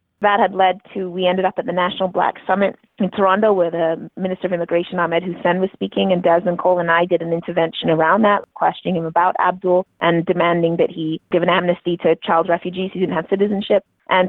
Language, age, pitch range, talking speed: English, 20-39, 170-195 Hz, 220 wpm